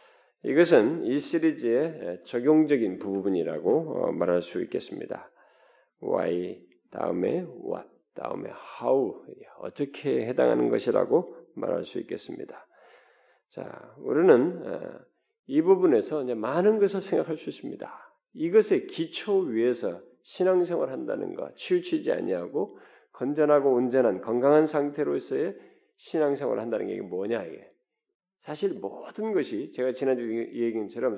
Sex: male